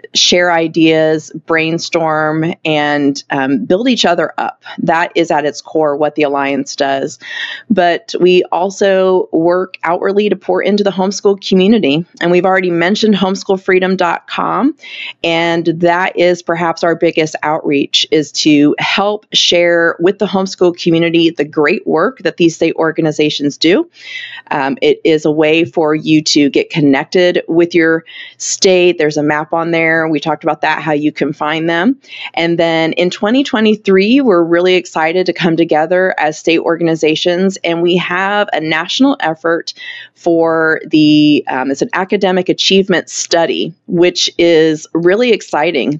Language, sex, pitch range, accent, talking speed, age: English, female, 160-190 Hz, American, 150 wpm, 30-49